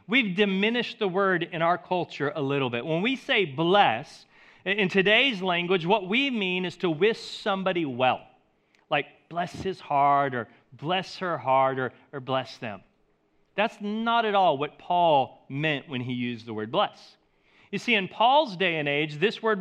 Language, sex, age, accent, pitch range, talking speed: English, male, 40-59, American, 165-230 Hz, 180 wpm